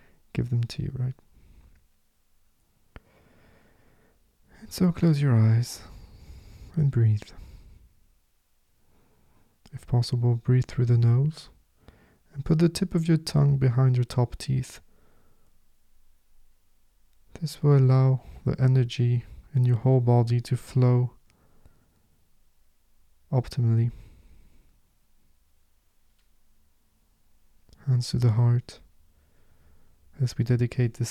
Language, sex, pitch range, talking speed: English, male, 85-130 Hz, 95 wpm